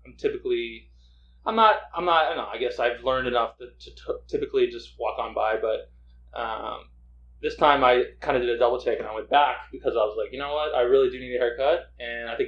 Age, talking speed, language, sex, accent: 20-39, 250 wpm, English, male, American